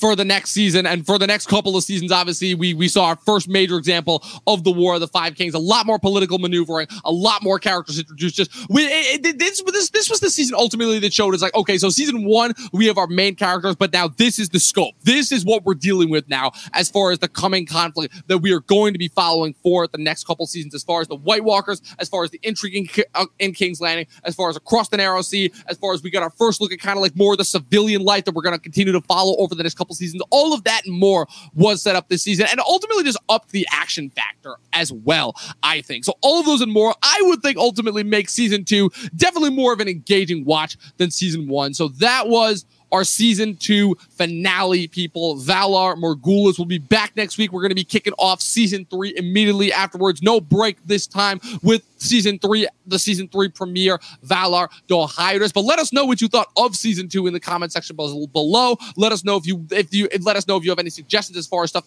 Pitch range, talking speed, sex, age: 175-215 Hz, 245 wpm, male, 20-39